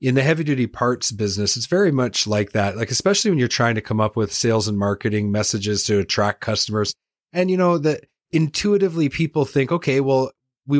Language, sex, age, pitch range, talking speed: English, male, 30-49, 105-135 Hz, 205 wpm